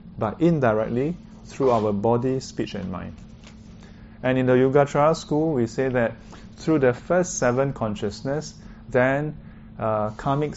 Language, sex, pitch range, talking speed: English, male, 110-140 Hz, 140 wpm